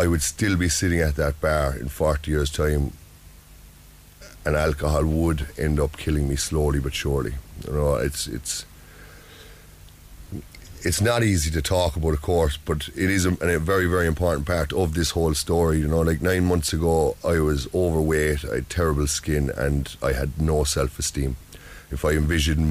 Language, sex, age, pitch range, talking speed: English, male, 30-49, 75-85 Hz, 180 wpm